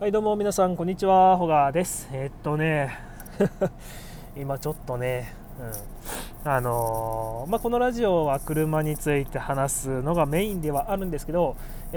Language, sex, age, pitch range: Japanese, male, 20-39, 135-175 Hz